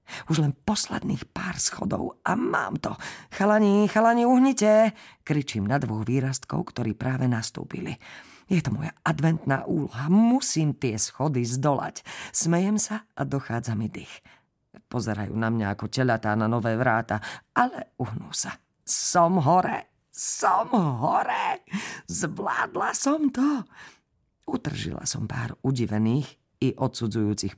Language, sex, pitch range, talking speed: Slovak, female, 115-175 Hz, 125 wpm